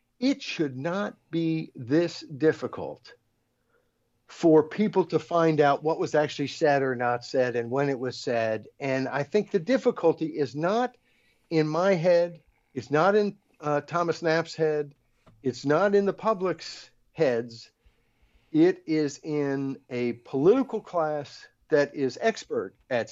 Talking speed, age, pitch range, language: 145 wpm, 60-79, 125-165 Hz, English